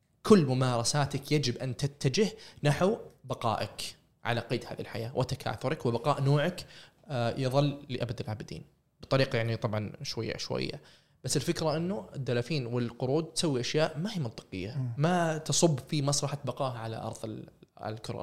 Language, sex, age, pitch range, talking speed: Arabic, male, 20-39, 120-145 Hz, 130 wpm